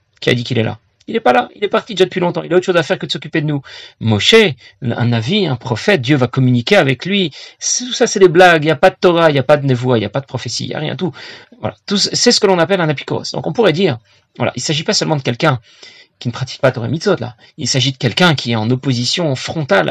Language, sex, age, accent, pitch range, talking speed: French, male, 40-59, French, 130-190 Hz, 305 wpm